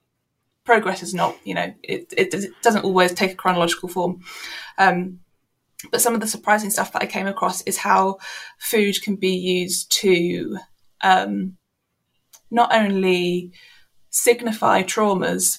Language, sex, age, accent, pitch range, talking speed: English, female, 20-39, British, 175-195 Hz, 140 wpm